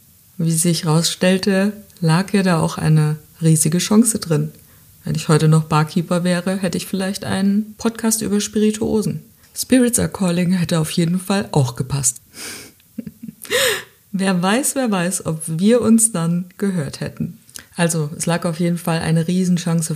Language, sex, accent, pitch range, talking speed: German, female, German, 155-185 Hz, 155 wpm